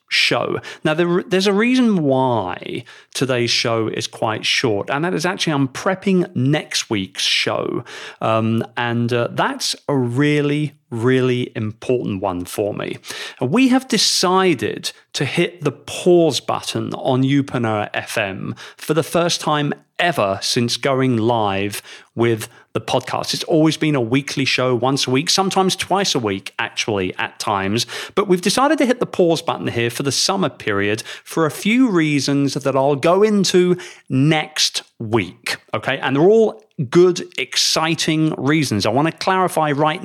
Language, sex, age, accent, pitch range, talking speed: English, male, 40-59, British, 120-165 Hz, 155 wpm